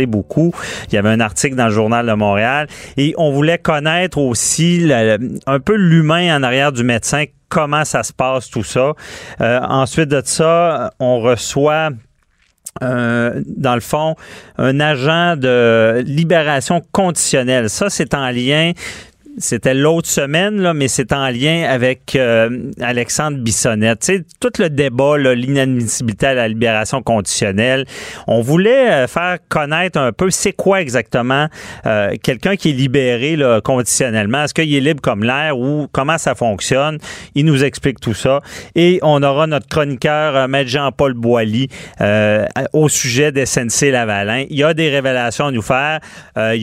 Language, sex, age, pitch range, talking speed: French, male, 40-59, 120-155 Hz, 160 wpm